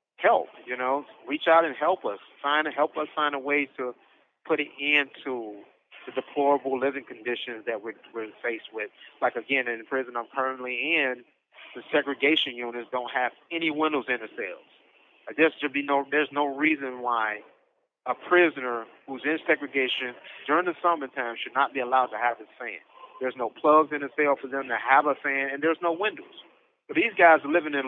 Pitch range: 135-175 Hz